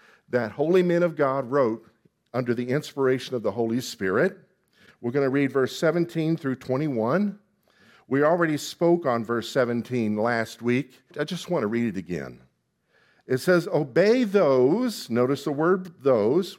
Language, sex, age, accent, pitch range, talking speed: English, male, 50-69, American, 125-175 Hz, 160 wpm